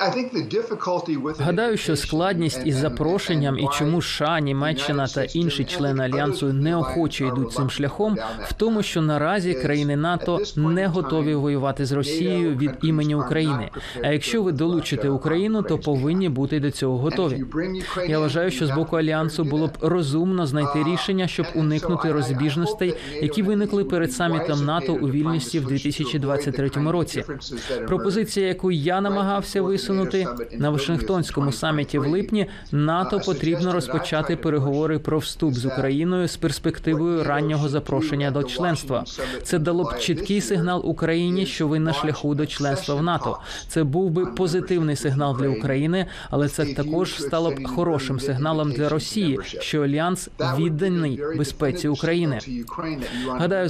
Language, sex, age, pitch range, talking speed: Ukrainian, male, 20-39, 145-175 Hz, 140 wpm